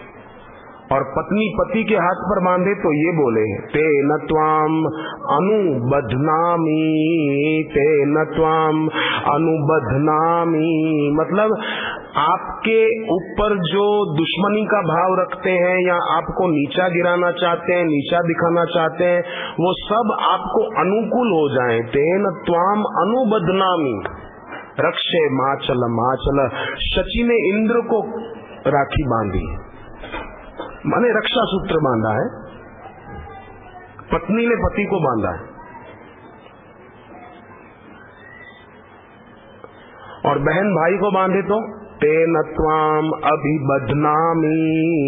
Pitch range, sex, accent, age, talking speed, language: 145-190 Hz, male, native, 40-59, 95 wpm, Hindi